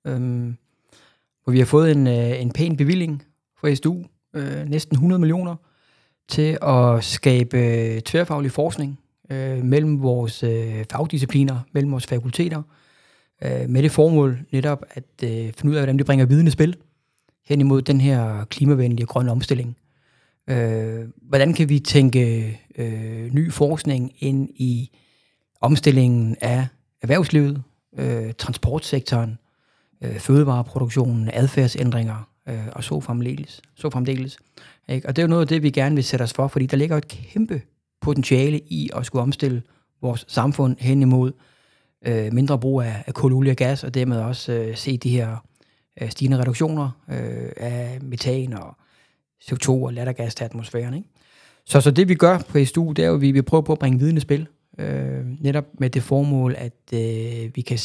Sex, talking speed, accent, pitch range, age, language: male, 155 wpm, native, 120-145 Hz, 30-49, Danish